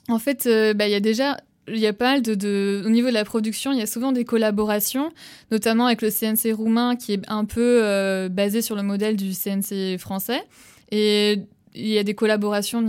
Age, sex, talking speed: 20-39, female, 230 wpm